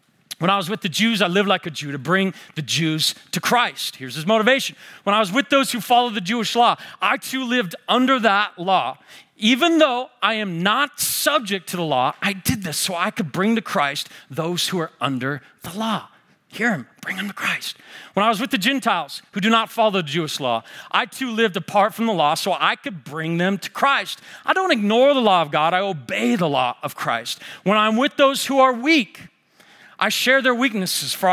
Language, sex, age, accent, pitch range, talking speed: English, male, 40-59, American, 140-225 Hz, 225 wpm